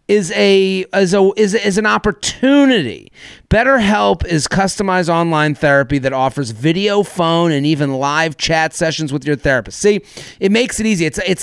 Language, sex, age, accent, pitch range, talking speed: English, male, 30-49, American, 145-195 Hz, 180 wpm